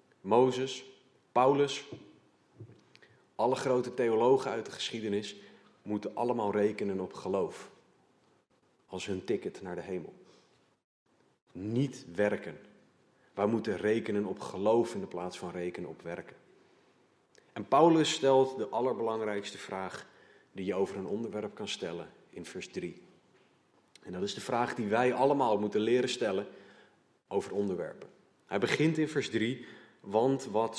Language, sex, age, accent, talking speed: Dutch, male, 40-59, Dutch, 135 wpm